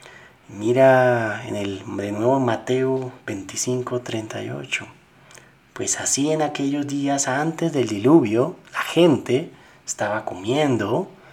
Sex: male